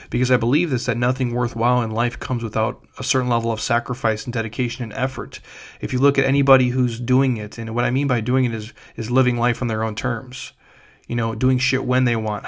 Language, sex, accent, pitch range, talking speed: English, male, American, 115-130 Hz, 240 wpm